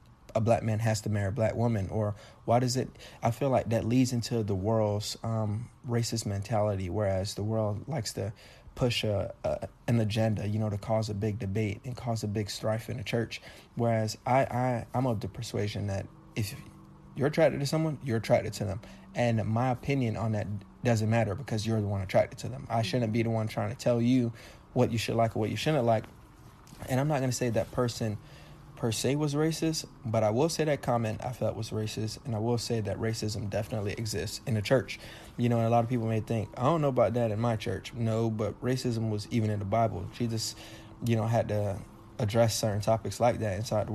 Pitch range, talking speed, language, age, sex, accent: 105-120 Hz, 230 wpm, English, 20-39, male, American